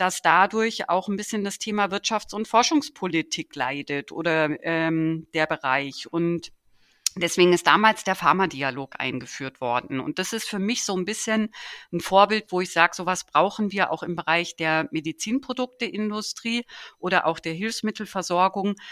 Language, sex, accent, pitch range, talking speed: German, female, German, 170-210 Hz, 150 wpm